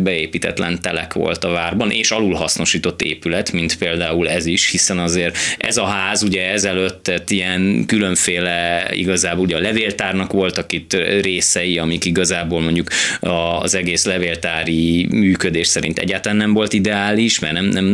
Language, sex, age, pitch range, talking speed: Hungarian, male, 20-39, 85-100 Hz, 145 wpm